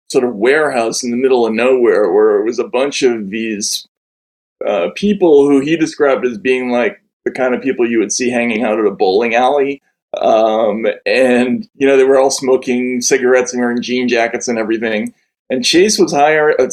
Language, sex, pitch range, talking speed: English, male, 125-180 Hz, 195 wpm